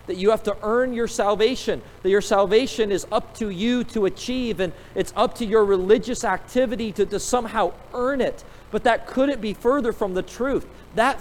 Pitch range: 175-245 Hz